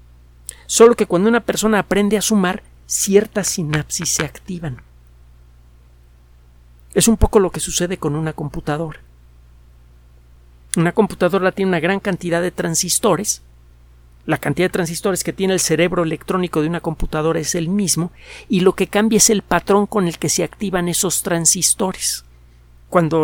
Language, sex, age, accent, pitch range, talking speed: Spanish, male, 50-69, Mexican, 140-190 Hz, 150 wpm